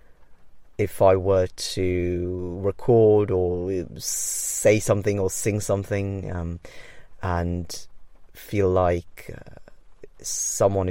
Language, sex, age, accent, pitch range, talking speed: English, male, 30-49, British, 90-100 Hz, 90 wpm